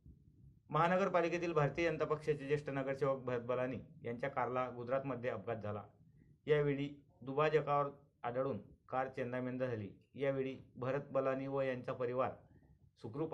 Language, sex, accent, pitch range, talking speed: Marathi, male, native, 120-145 Hz, 115 wpm